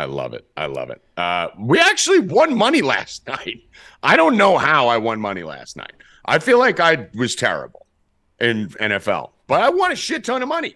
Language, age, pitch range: English, 40-59, 125-190 Hz